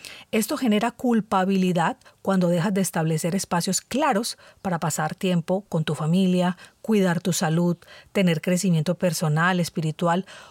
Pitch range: 175-220 Hz